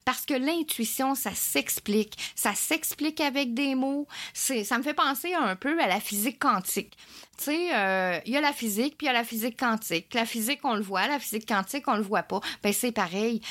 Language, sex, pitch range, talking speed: French, female, 195-270 Hz, 230 wpm